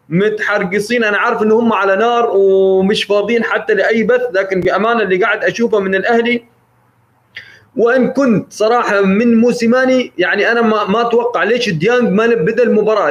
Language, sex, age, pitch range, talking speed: Arabic, male, 30-49, 195-240 Hz, 155 wpm